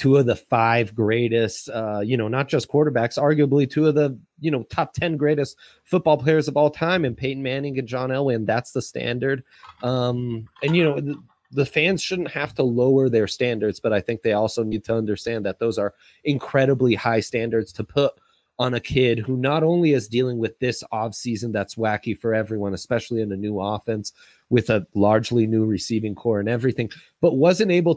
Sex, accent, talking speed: male, American, 200 wpm